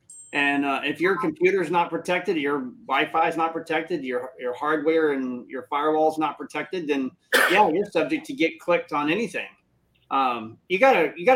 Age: 30-49